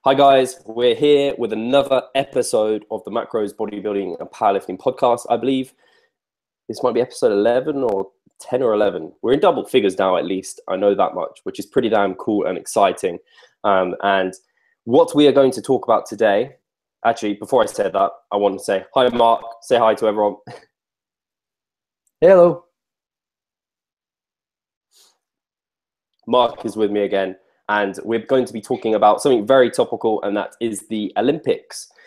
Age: 20-39